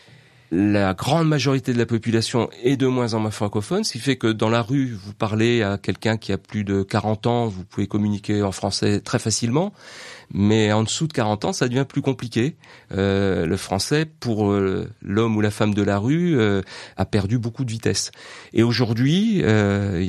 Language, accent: French, French